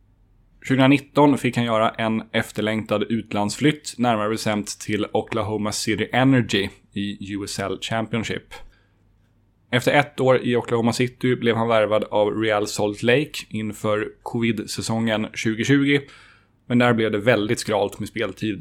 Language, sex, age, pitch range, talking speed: Swedish, male, 10-29, 105-120 Hz, 130 wpm